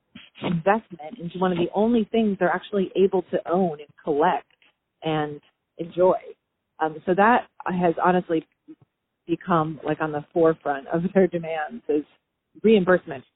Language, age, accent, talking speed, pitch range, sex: English, 30-49, American, 140 wpm, 150-175 Hz, female